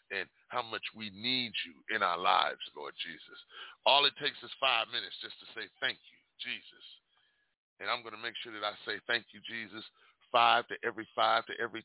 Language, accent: English, American